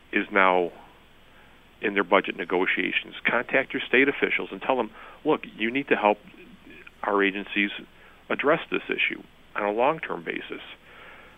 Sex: male